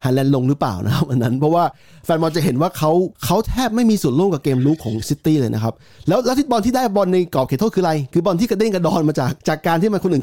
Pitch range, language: 140-185 Hz, Thai